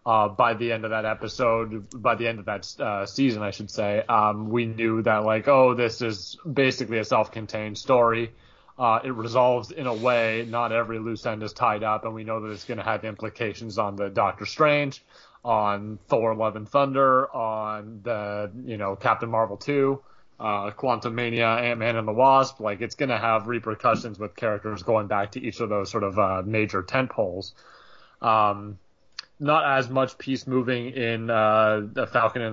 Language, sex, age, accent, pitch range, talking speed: English, male, 30-49, American, 105-120 Hz, 195 wpm